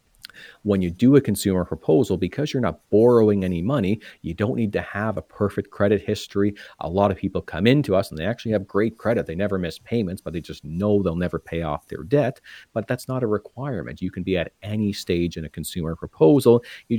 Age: 40-59